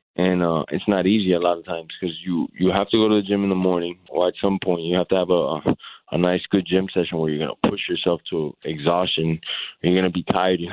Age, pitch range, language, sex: 20-39, 90-100 Hz, English, male